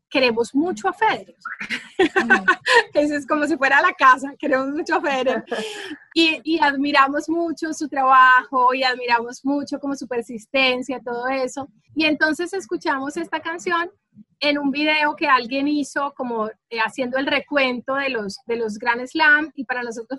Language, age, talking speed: Spanish, 30-49, 155 wpm